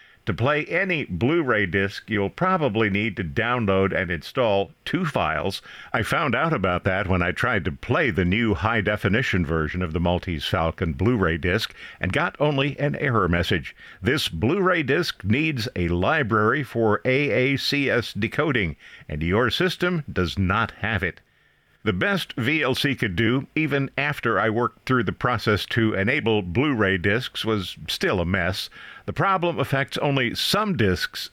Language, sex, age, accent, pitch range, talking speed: English, male, 50-69, American, 100-130 Hz, 155 wpm